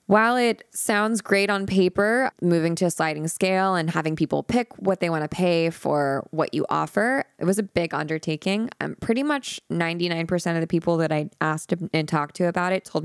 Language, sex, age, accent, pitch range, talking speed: English, female, 20-39, American, 155-190 Hz, 205 wpm